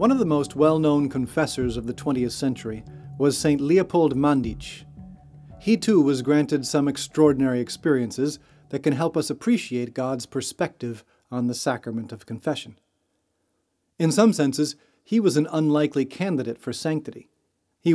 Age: 40-59